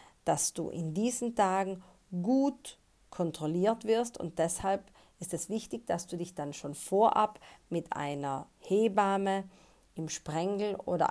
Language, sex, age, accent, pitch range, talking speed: German, female, 40-59, German, 165-200 Hz, 135 wpm